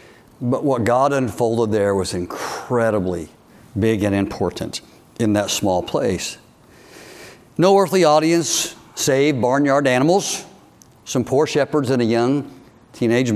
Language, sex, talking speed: English, male, 120 wpm